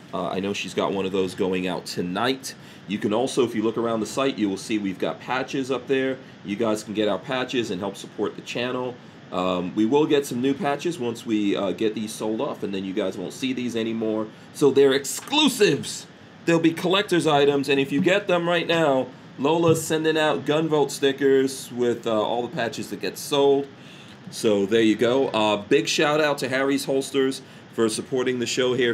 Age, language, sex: 40-59, English, male